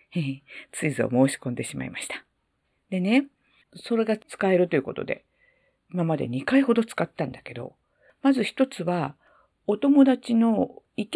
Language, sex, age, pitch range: Japanese, female, 50-69, 140-235 Hz